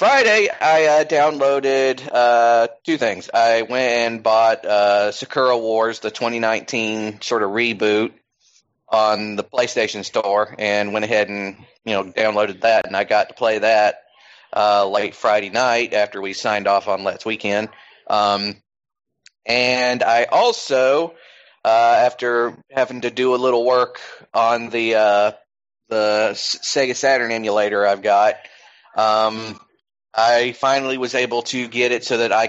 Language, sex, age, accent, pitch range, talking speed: English, male, 30-49, American, 110-135 Hz, 150 wpm